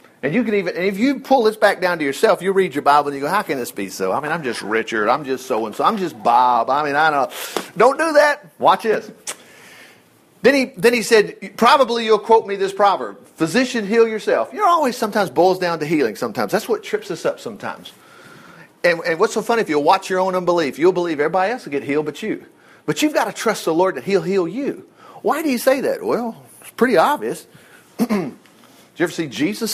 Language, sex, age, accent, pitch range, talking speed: English, male, 40-59, American, 155-225 Hz, 245 wpm